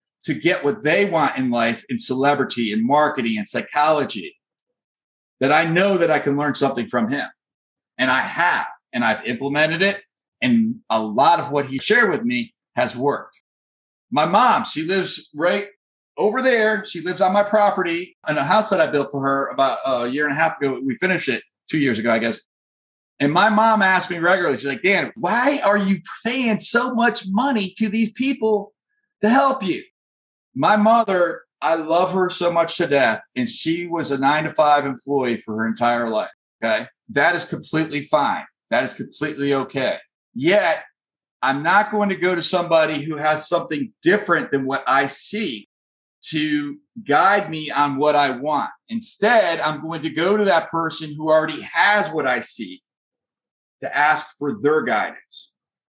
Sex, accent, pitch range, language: male, American, 145-210 Hz, English